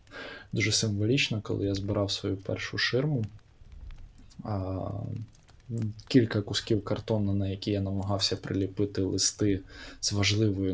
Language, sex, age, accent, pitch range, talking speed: Ukrainian, male, 20-39, native, 100-120 Hz, 110 wpm